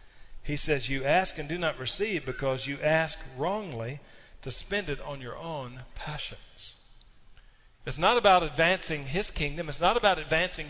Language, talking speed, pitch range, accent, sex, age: English, 165 wpm, 120-165 Hz, American, male, 40-59